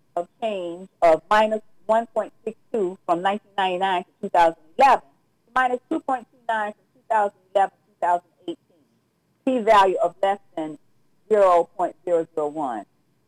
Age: 50-69